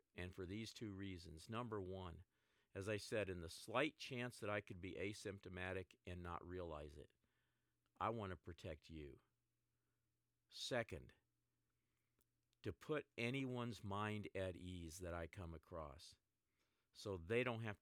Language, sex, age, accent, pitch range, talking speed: English, male, 50-69, American, 90-110 Hz, 145 wpm